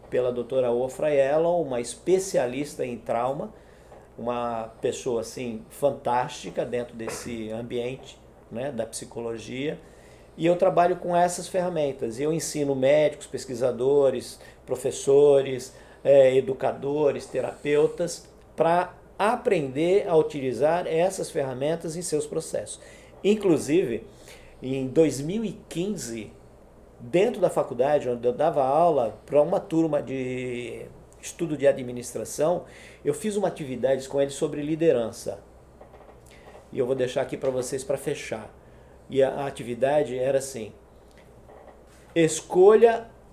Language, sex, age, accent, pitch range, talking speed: Portuguese, male, 50-69, Brazilian, 130-180 Hz, 110 wpm